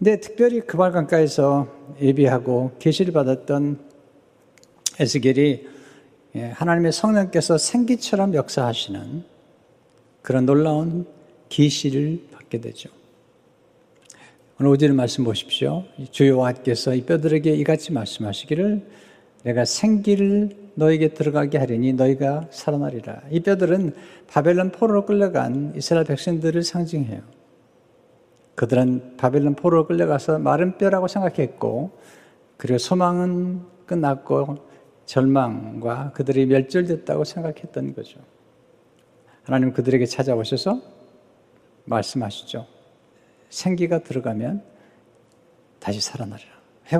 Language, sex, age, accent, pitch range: Chinese, male, 60-79, Korean, 130-175 Hz